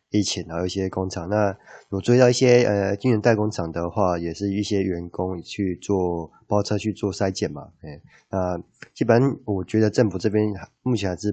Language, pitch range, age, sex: Chinese, 90-110 Hz, 20-39, male